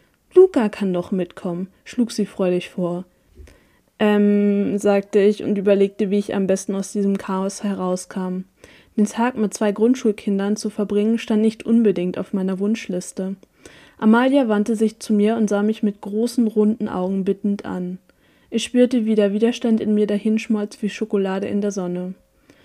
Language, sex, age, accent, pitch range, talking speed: German, female, 20-39, German, 195-230 Hz, 160 wpm